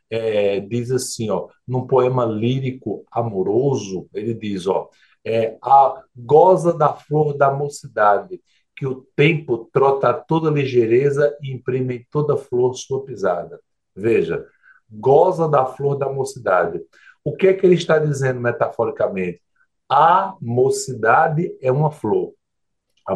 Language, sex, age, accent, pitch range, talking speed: Portuguese, male, 60-79, Brazilian, 130-190 Hz, 135 wpm